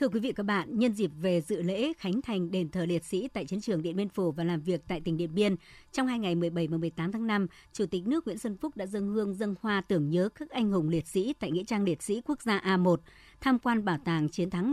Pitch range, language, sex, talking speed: 180-230 Hz, Vietnamese, male, 285 wpm